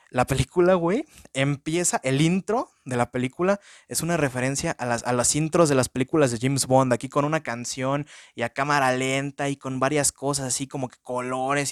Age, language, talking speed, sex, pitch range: 20-39, Spanish, 195 wpm, male, 120-145 Hz